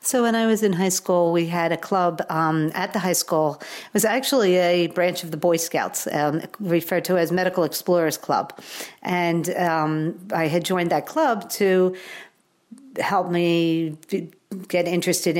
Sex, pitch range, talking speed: female, 160-185 Hz, 170 wpm